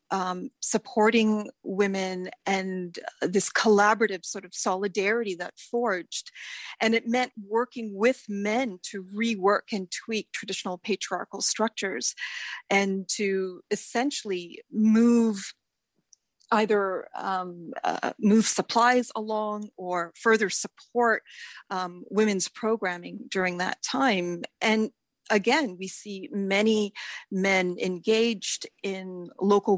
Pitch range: 190-235 Hz